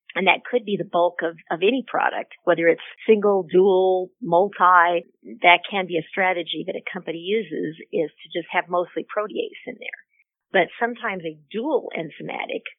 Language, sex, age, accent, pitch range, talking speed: English, female, 50-69, American, 170-210 Hz, 175 wpm